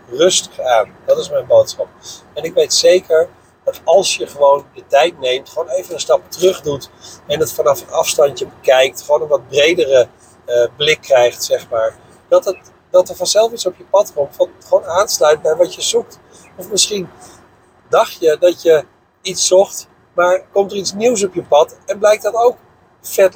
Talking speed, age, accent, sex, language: 190 wpm, 50-69, Dutch, male, Dutch